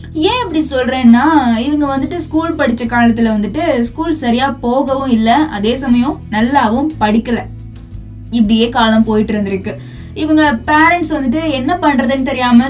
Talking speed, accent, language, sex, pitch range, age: 125 wpm, native, Tamil, female, 230-290 Hz, 20-39